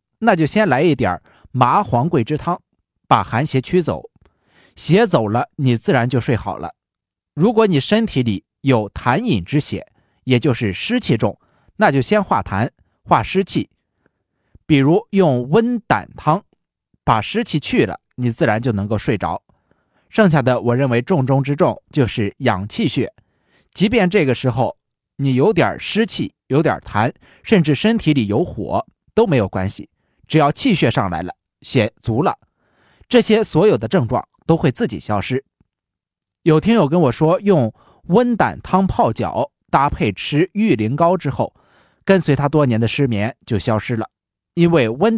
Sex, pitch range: male, 115-180 Hz